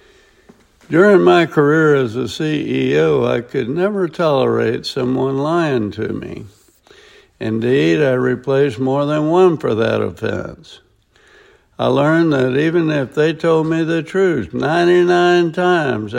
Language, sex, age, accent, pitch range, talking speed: English, male, 60-79, American, 120-155 Hz, 130 wpm